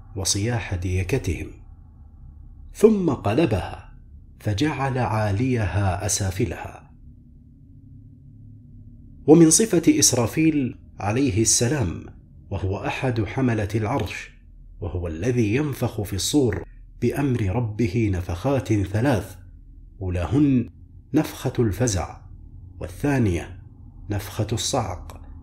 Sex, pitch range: male, 95-125 Hz